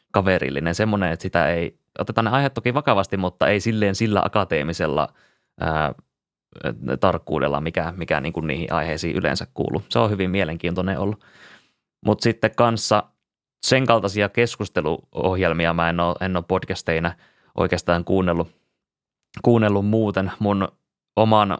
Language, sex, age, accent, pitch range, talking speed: Finnish, male, 20-39, native, 85-100 Hz, 130 wpm